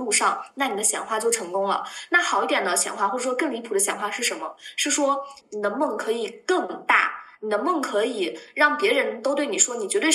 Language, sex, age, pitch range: Chinese, female, 20-39, 215-325 Hz